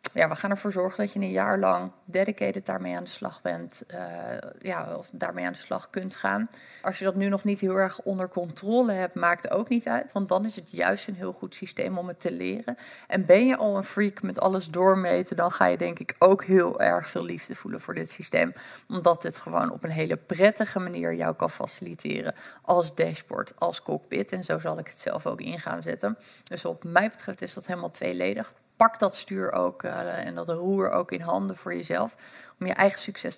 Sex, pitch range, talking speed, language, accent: female, 160-200 Hz, 225 wpm, Dutch, Dutch